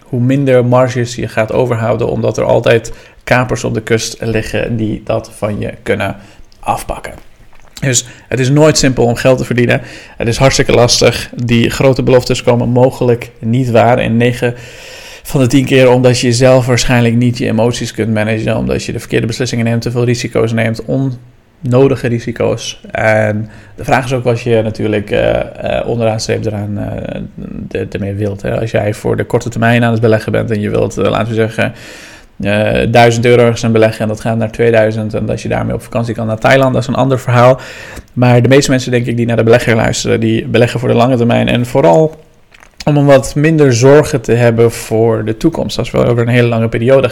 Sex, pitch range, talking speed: male, 110-125 Hz, 205 wpm